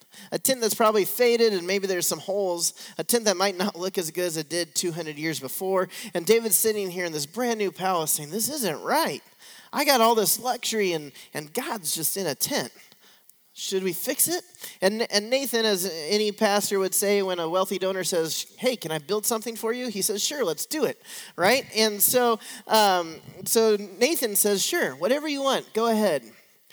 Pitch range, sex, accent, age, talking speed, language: 160-225 Hz, male, American, 20-39, 205 wpm, English